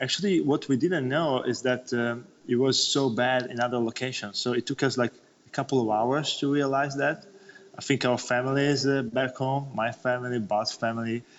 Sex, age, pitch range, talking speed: male, 20-39, 105-125 Hz, 200 wpm